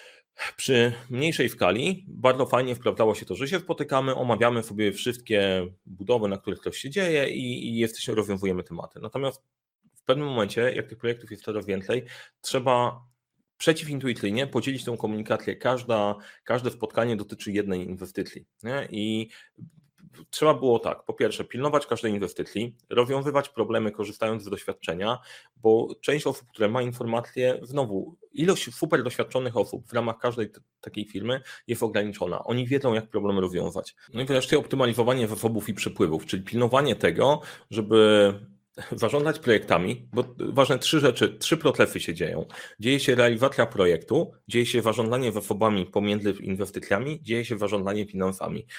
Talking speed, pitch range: 145 wpm, 105-130 Hz